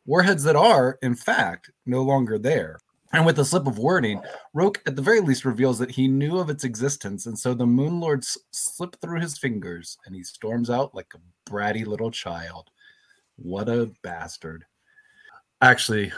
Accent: American